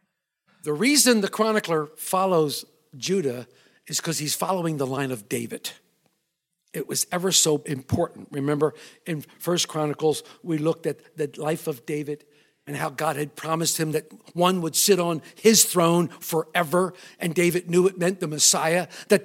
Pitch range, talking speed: 170-255 Hz, 160 wpm